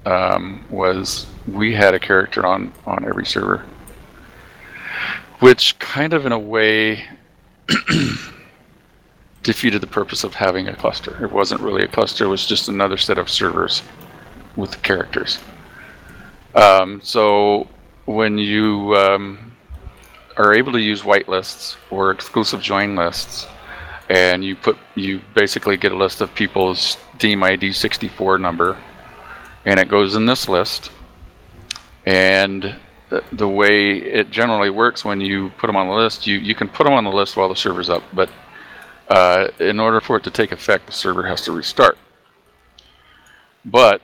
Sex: male